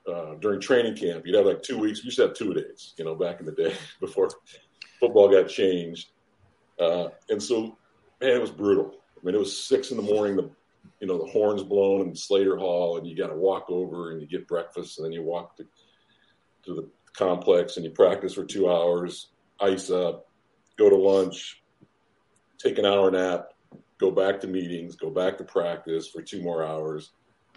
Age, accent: 50-69, American